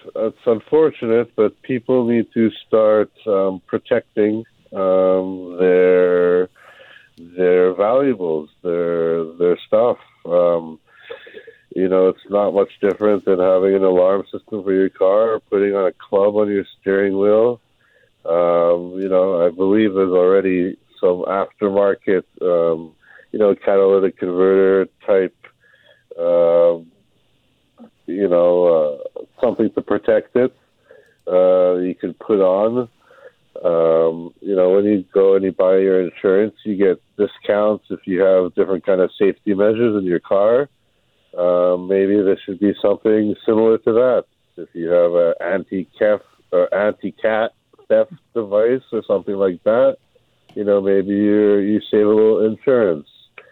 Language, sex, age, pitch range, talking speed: English, male, 60-79, 90-115 Hz, 140 wpm